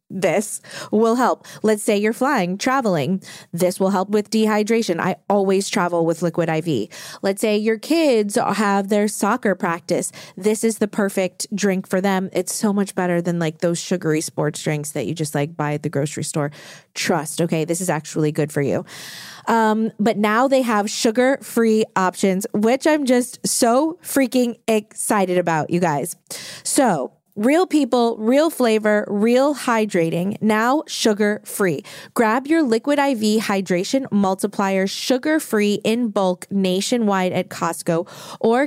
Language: English